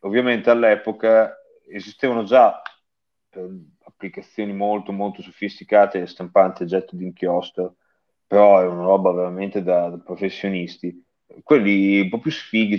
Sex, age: male, 30-49